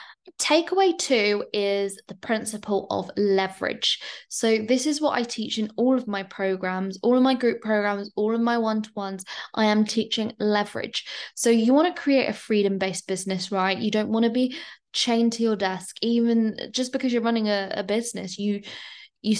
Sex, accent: female, British